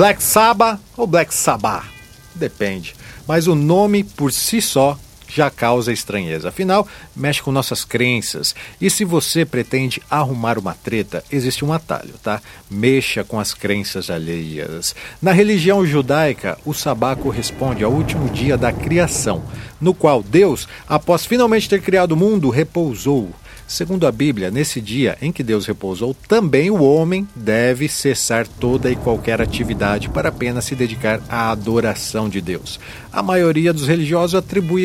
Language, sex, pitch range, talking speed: Portuguese, male, 110-155 Hz, 150 wpm